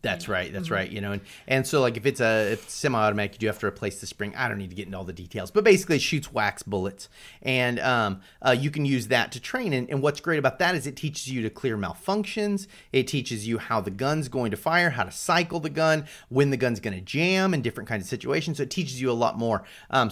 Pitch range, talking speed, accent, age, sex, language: 110-160 Hz, 275 wpm, American, 30-49, male, English